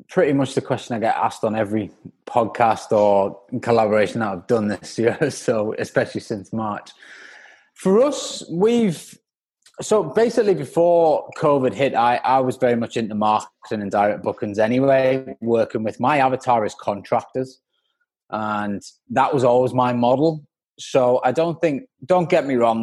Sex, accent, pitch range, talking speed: male, British, 105-135 Hz, 160 wpm